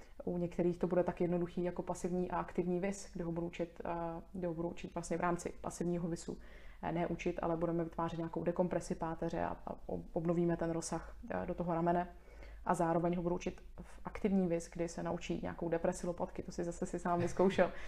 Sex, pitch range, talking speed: female, 170-185 Hz, 195 wpm